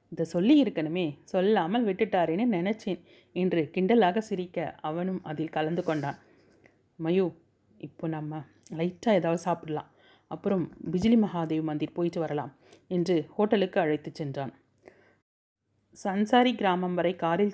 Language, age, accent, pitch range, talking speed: Tamil, 30-49, native, 160-195 Hz, 115 wpm